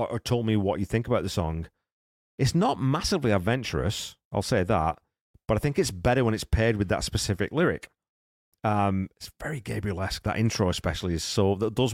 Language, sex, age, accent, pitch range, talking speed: English, male, 30-49, British, 90-115 Hz, 200 wpm